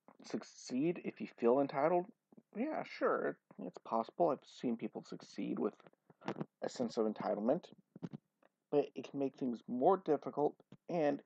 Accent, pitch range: American, 115-145 Hz